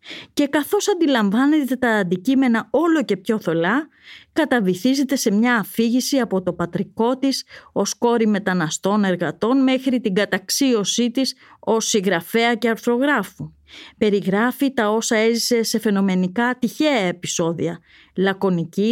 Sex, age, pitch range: female, 30-49, 190-255 Hz